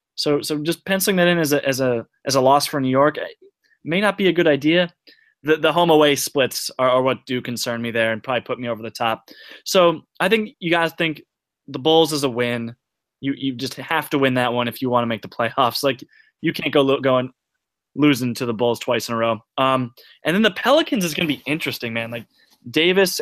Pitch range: 125-155 Hz